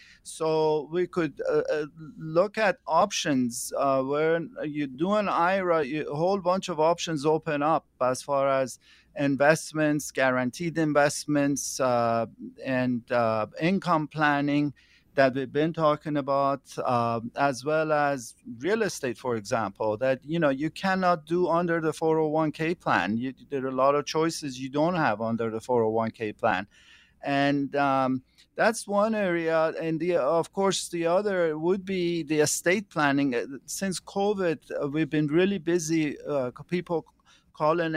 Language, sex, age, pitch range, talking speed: English, male, 50-69, 140-170 Hz, 150 wpm